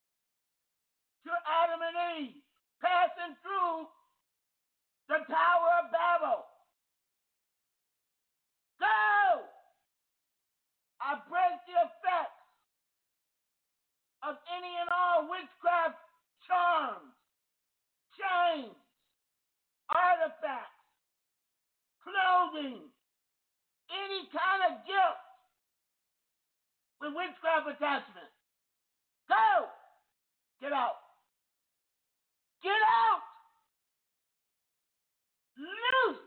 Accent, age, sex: American, 50-69, male